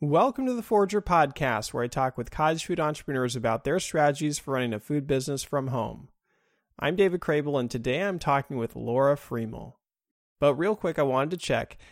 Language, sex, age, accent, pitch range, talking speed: English, male, 30-49, American, 125-155 Hz, 195 wpm